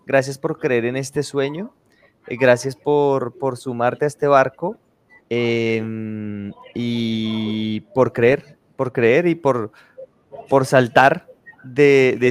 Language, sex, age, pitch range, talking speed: Spanish, male, 20-39, 120-155 Hz, 120 wpm